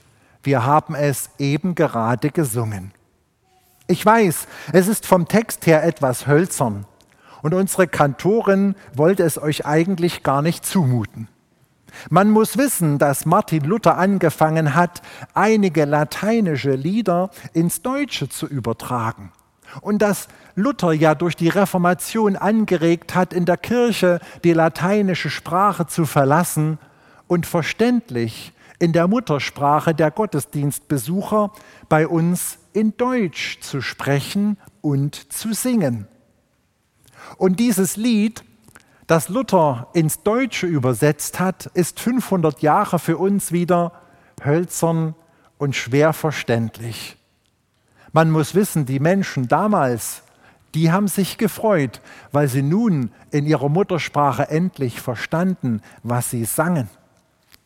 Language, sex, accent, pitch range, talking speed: German, male, German, 140-185 Hz, 120 wpm